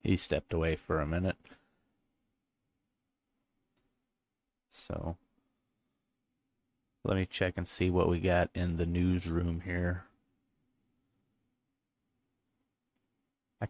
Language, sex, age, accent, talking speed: English, male, 30-49, American, 90 wpm